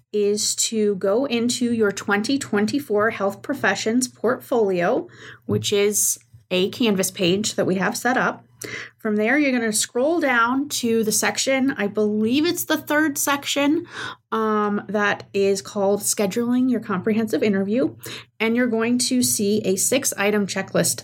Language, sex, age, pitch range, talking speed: English, female, 20-39, 195-240 Hz, 145 wpm